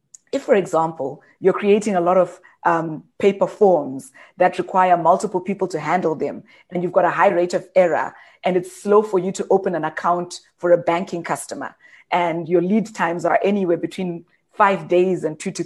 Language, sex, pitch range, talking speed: English, female, 175-210 Hz, 195 wpm